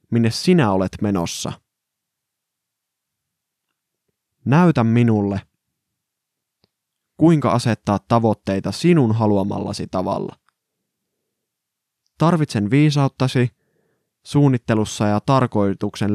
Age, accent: 20-39, native